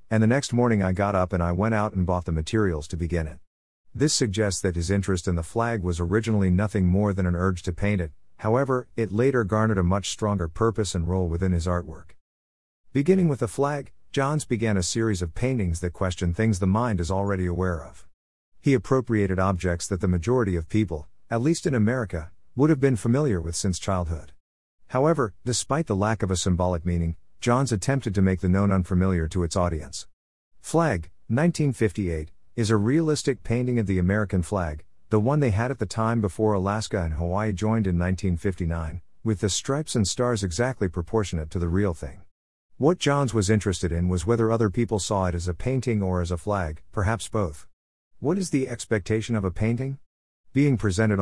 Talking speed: 200 wpm